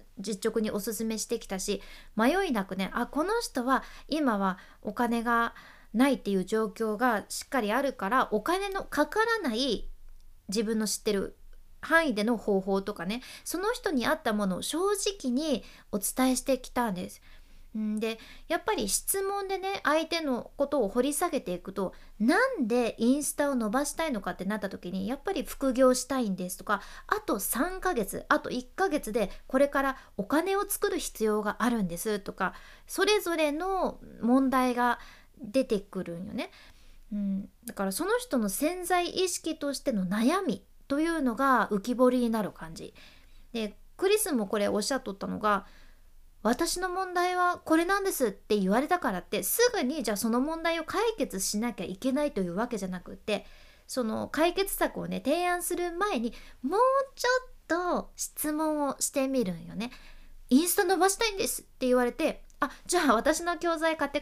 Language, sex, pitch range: Japanese, female, 215-330 Hz